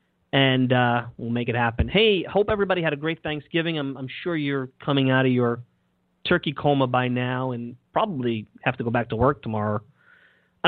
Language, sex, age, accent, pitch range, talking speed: English, male, 30-49, American, 125-160 Hz, 195 wpm